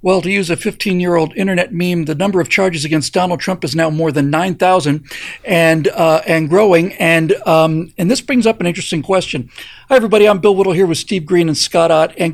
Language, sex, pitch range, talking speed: English, male, 175-240 Hz, 220 wpm